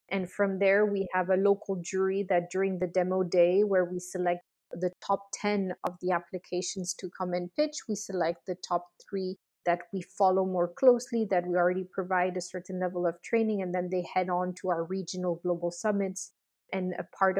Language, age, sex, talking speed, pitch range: English, 20-39, female, 200 wpm, 185-210 Hz